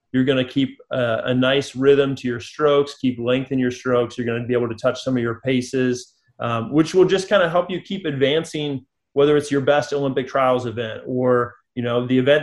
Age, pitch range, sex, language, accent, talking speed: 30-49, 125-150 Hz, male, English, American, 235 wpm